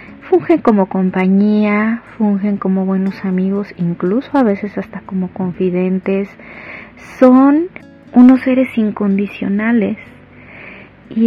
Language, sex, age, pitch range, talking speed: Spanish, female, 30-49, 195-240 Hz, 95 wpm